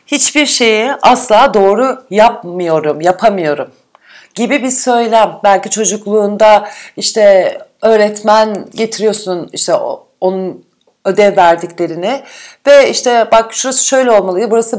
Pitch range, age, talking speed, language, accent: 185-235 Hz, 40-59, 100 wpm, Turkish, native